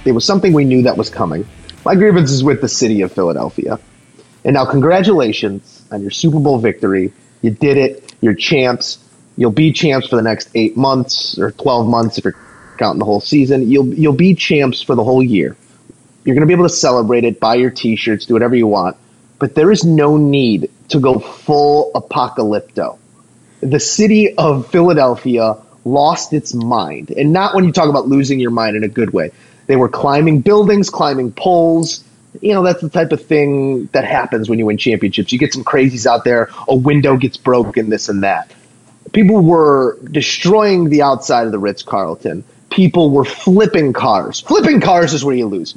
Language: English